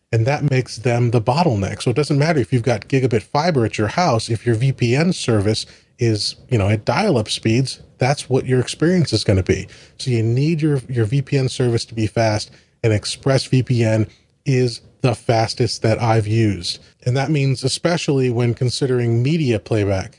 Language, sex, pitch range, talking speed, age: English, male, 110-135 Hz, 180 wpm, 30-49